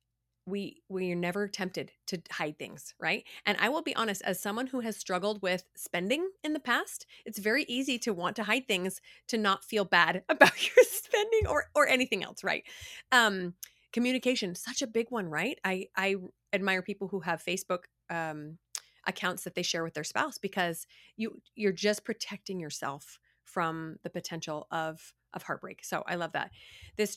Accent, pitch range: American, 170-220 Hz